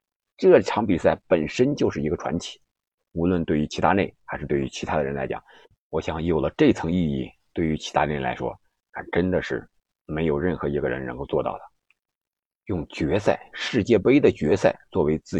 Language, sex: Chinese, male